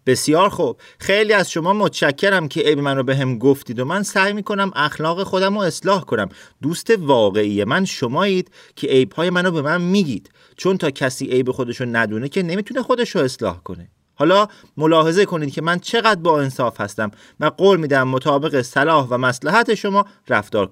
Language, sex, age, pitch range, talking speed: Persian, male, 30-49, 130-185 Hz, 175 wpm